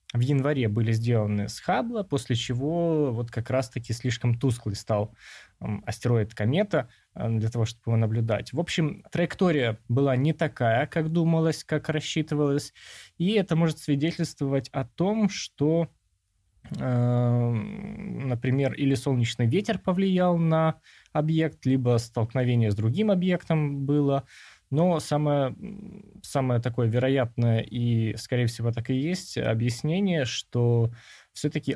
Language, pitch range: Russian, 115-150 Hz